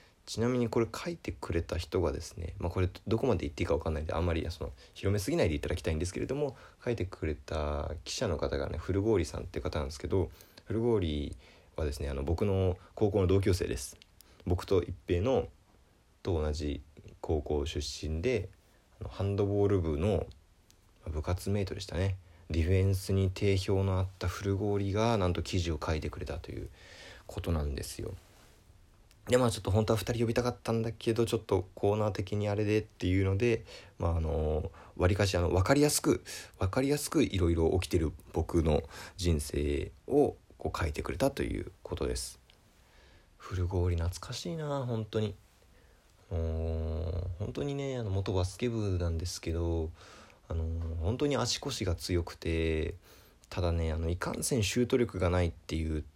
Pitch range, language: 85-105 Hz, Japanese